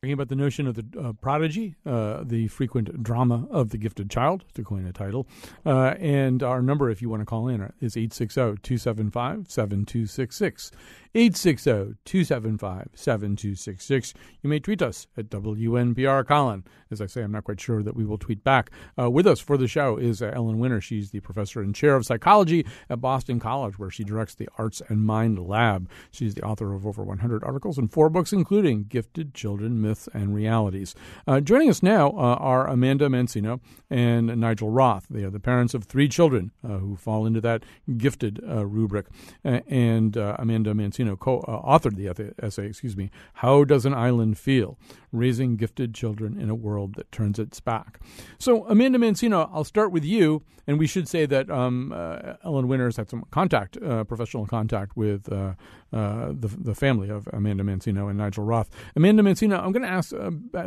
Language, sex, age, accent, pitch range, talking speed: English, male, 50-69, American, 105-140 Hz, 190 wpm